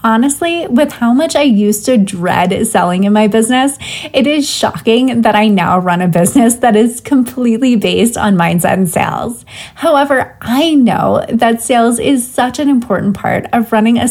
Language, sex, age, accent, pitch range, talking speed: English, female, 20-39, American, 200-265 Hz, 180 wpm